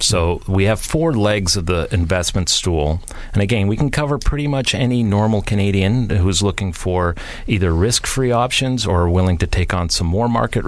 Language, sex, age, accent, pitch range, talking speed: English, male, 40-59, American, 85-105 Hz, 190 wpm